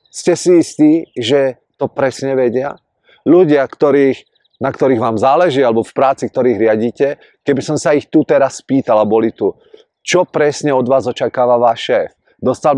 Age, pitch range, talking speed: 40-59, 120-155 Hz, 165 wpm